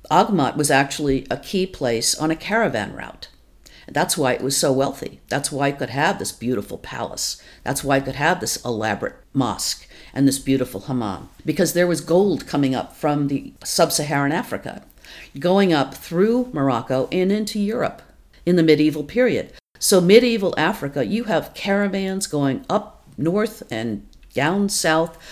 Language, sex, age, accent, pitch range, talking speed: English, female, 50-69, American, 135-180 Hz, 165 wpm